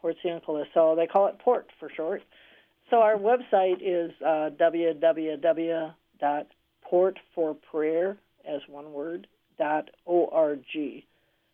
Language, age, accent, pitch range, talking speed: English, 50-69, American, 155-185 Hz, 90 wpm